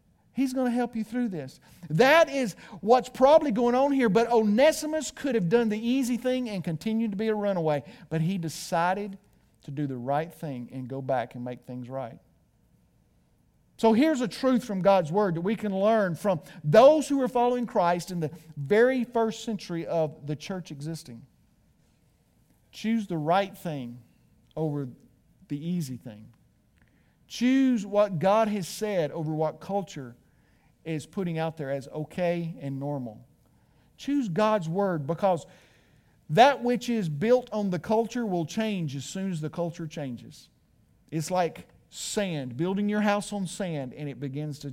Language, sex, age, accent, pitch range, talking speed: English, male, 50-69, American, 150-225 Hz, 165 wpm